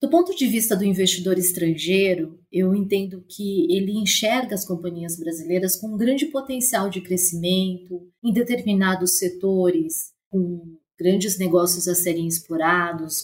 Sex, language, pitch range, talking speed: female, Portuguese, 175-215 Hz, 135 wpm